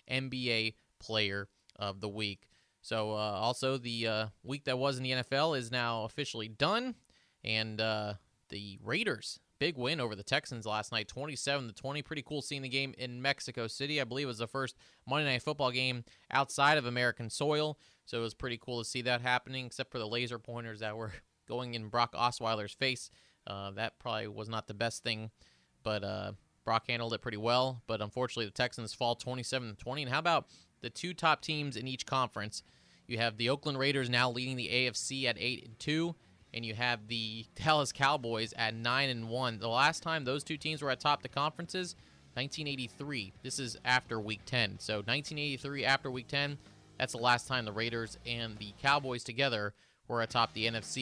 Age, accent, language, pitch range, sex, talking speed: 30-49, American, English, 110-135 Hz, male, 190 wpm